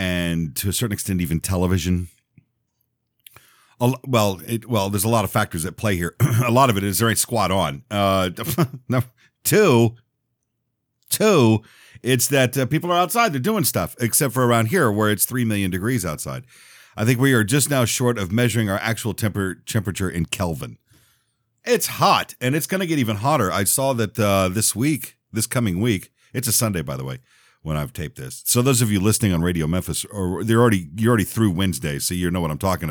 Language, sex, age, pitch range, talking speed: English, male, 50-69, 95-125 Hz, 210 wpm